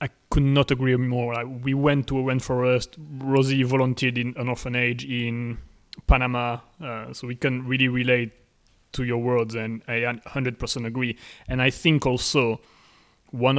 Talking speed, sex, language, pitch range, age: 160 wpm, male, English, 120-130 Hz, 30-49